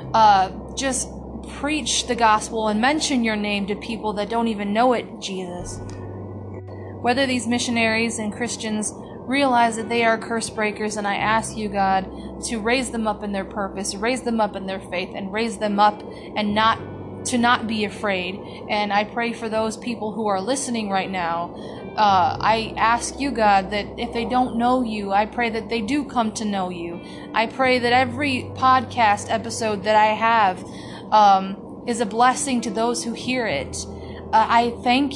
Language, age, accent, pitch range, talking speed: English, 30-49, American, 205-240 Hz, 185 wpm